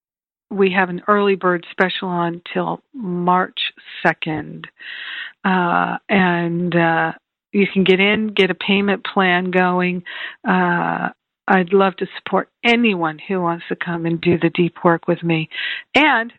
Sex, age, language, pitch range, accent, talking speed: female, 50-69, English, 170-200 Hz, American, 145 wpm